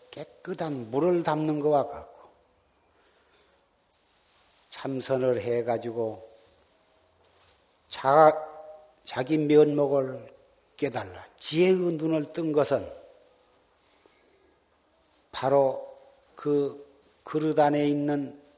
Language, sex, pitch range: Korean, male, 130-200 Hz